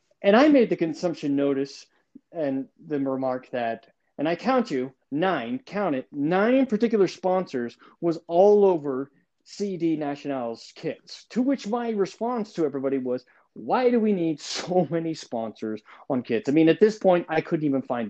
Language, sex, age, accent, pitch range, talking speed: English, male, 30-49, American, 130-210 Hz, 170 wpm